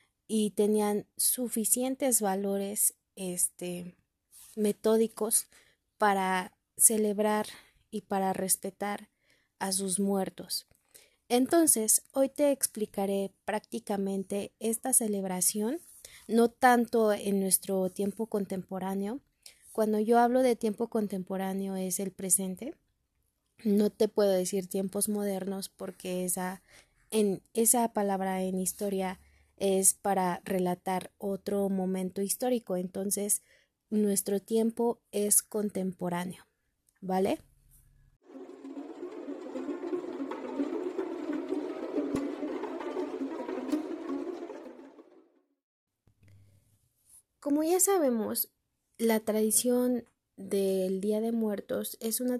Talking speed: 80 wpm